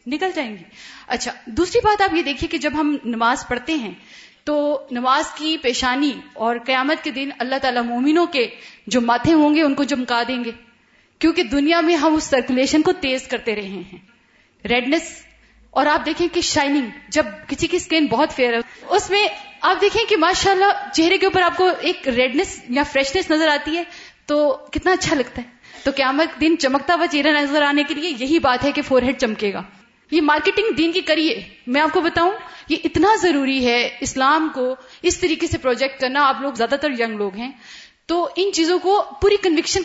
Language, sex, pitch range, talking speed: Urdu, female, 250-335 Hz, 185 wpm